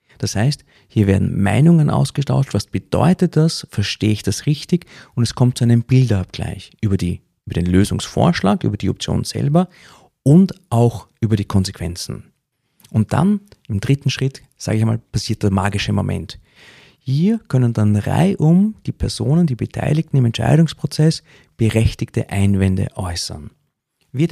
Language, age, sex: German, 40-59, male